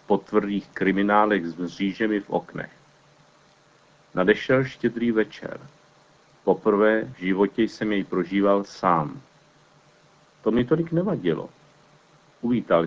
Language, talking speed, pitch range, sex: Czech, 105 wpm, 100-120 Hz, male